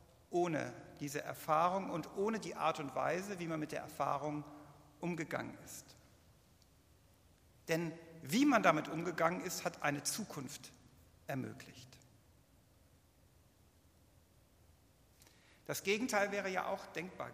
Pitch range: 125-185 Hz